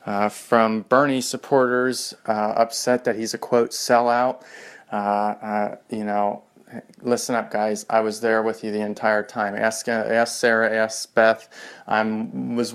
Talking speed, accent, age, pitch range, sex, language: 155 wpm, American, 30-49, 110-120 Hz, male, English